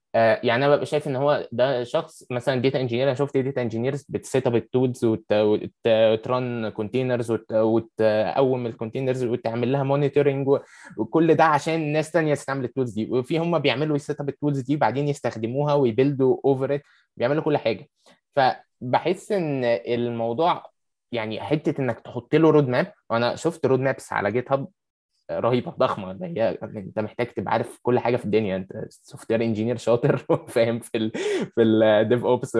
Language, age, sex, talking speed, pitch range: Arabic, 20-39, male, 165 wpm, 115-140 Hz